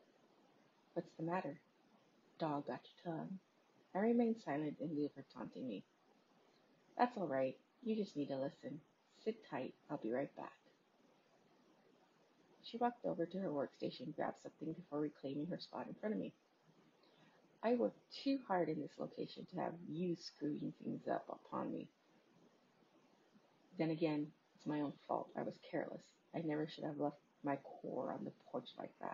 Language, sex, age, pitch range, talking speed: English, female, 30-49, 150-195 Hz, 165 wpm